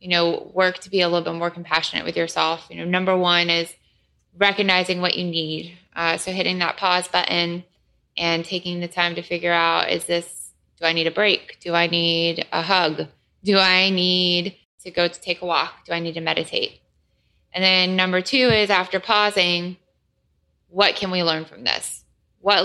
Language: English